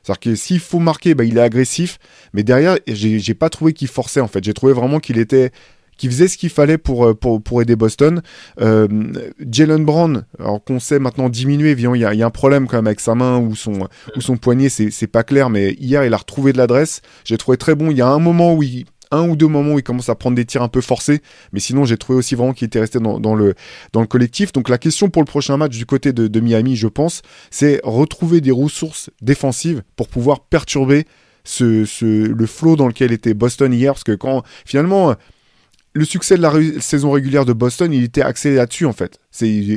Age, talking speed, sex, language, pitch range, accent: 20-39, 240 wpm, male, French, 115-150 Hz, French